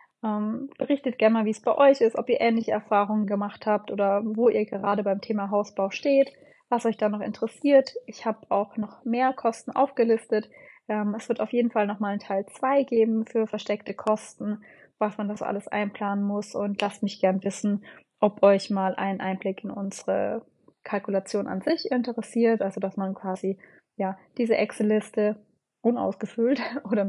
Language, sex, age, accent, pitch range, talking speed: German, female, 20-39, German, 200-235 Hz, 175 wpm